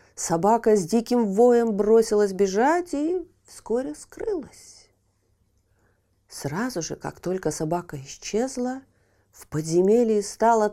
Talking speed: 100 wpm